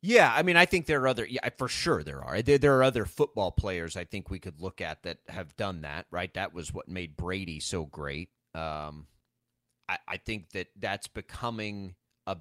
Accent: American